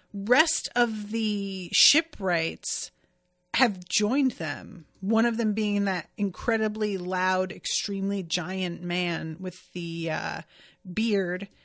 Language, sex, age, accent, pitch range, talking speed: English, female, 30-49, American, 185-225 Hz, 110 wpm